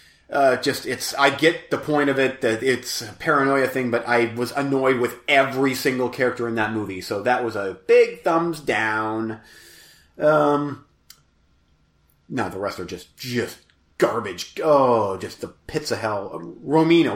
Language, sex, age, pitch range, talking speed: English, male, 30-49, 120-155 Hz, 165 wpm